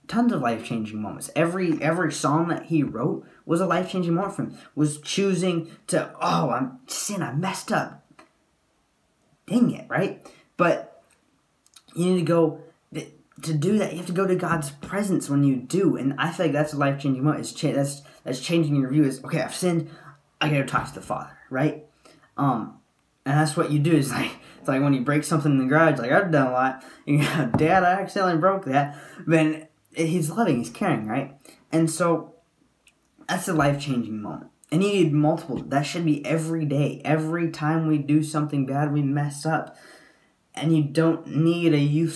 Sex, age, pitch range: male, 10-29, 140-165 Hz